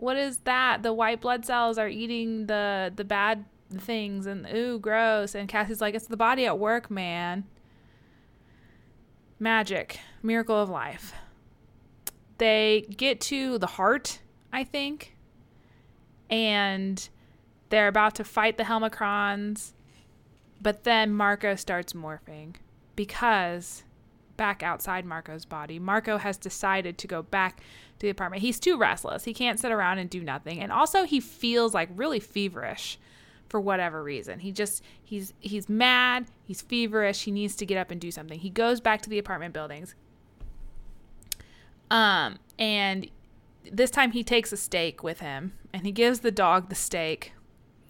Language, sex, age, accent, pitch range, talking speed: English, female, 20-39, American, 175-225 Hz, 150 wpm